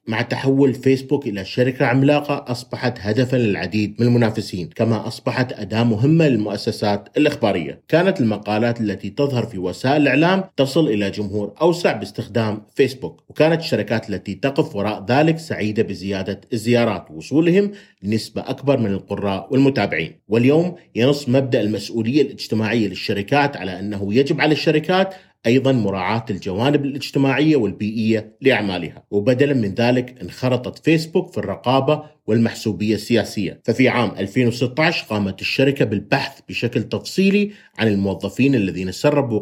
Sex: male